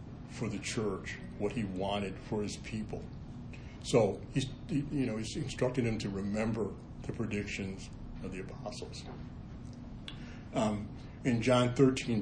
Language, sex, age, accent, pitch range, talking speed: English, male, 60-79, American, 100-120 Hz, 135 wpm